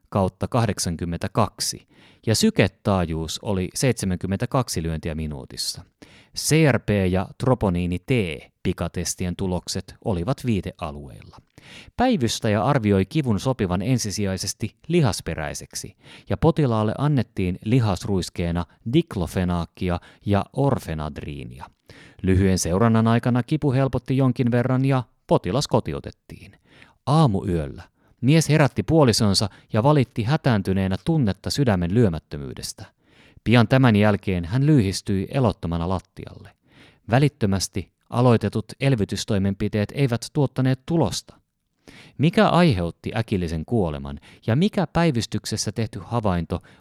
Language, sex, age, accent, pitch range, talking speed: Finnish, male, 30-49, native, 90-130 Hz, 90 wpm